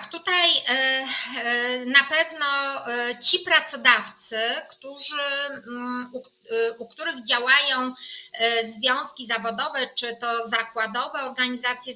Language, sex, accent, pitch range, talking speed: Polish, female, native, 235-280 Hz, 70 wpm